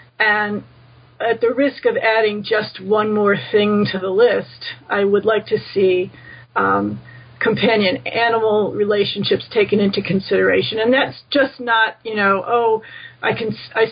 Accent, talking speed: American, 150 wpm